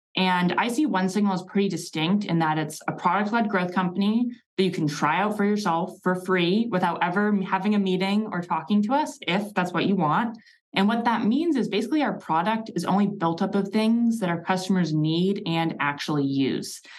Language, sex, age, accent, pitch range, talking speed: English, female, 20-39, American, 165-210 Hz, 210 wpm